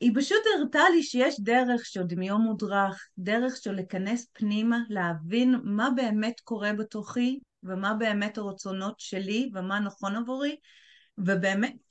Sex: female